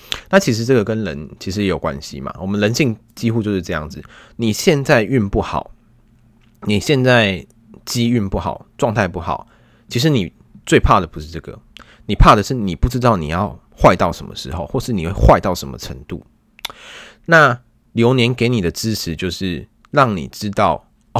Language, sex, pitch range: Chinese, male, 95-120 Hz